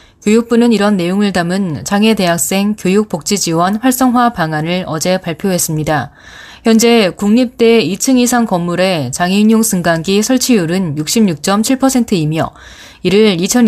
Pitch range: 175-225 Hz